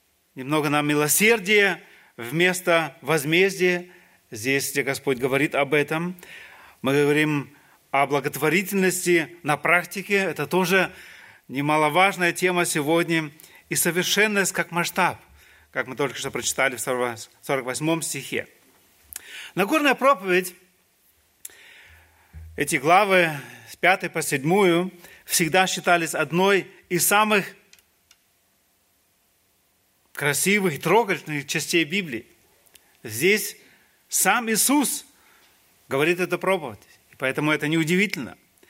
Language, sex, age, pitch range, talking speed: Russian, male, 30-49, 140-195 Hz, 95 wpm